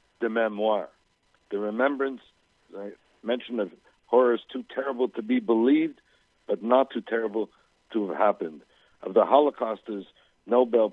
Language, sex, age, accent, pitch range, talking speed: French, male, 60-79, American, 105-125 Hz, 135 wpm